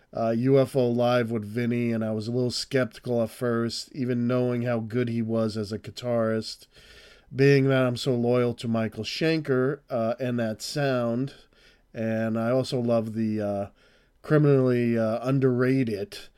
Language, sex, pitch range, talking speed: English, male, 110-130 Hz, 160 wpm